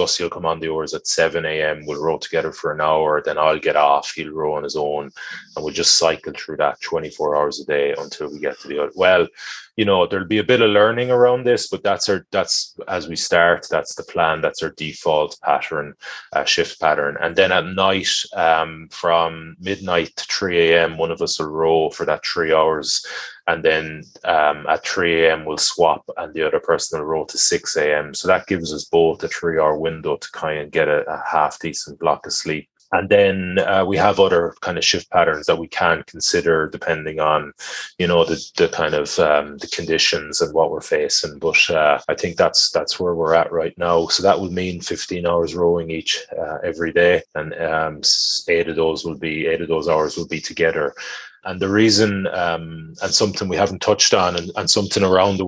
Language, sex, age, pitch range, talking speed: English, male, 20-39, 80-110 Hz, 220 wpm